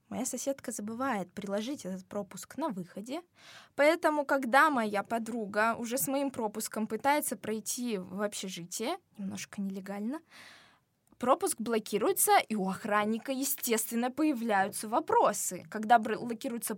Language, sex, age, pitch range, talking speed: Russian, female, 20-39, 205-275 Hz, 115 wpm